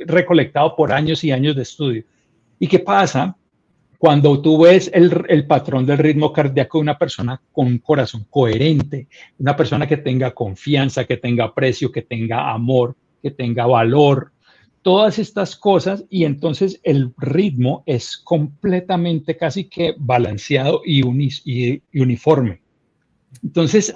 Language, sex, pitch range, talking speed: Spanish, male, 125-160 Hz, 145 wpm